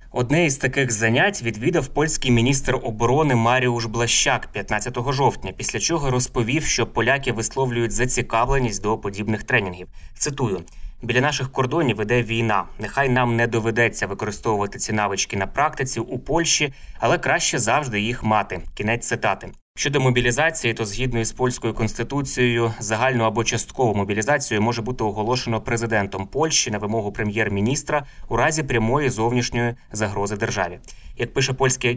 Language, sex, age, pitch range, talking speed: Ukrainian, male, 20-39, 105-125 Hz, 140 wpm